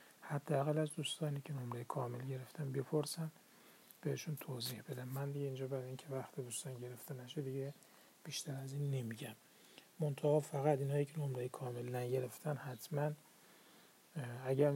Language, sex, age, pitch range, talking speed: Persian, male, 40-59, 125-150 Hz, 135 wpm